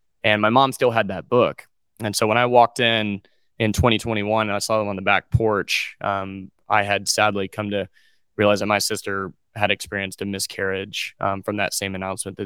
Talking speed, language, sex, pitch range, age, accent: 205 wpm, English, male, 95-105 Hz, 20-39, American